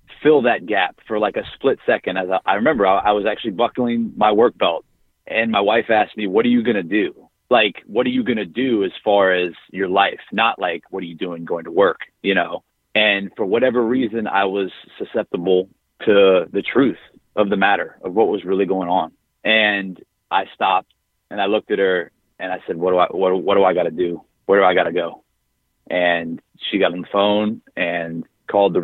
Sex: male